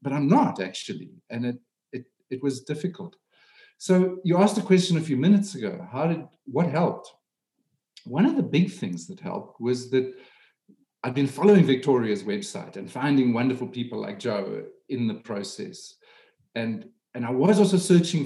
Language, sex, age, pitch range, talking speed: English, male, 50-69, 130-200 Hz, 170 wpm